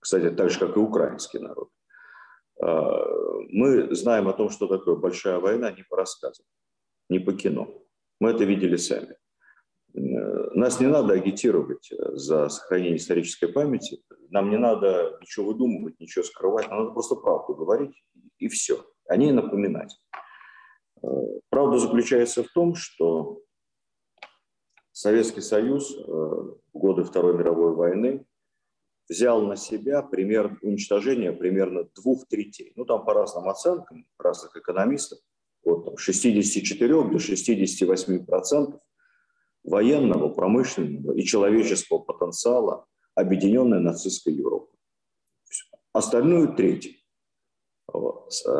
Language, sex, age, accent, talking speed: Russian, male, 40-59, native, 110 wpm